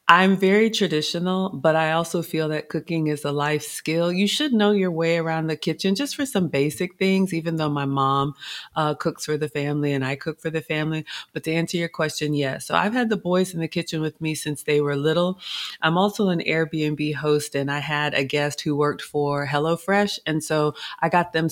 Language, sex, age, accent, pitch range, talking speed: English, female, 30-49, American, 150-170 Hz, 225 wpm